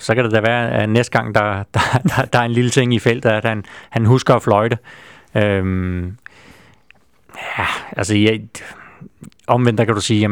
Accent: native